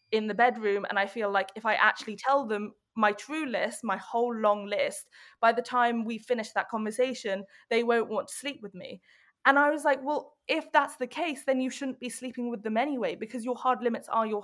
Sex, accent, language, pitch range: female, British, English, 210-250 Hz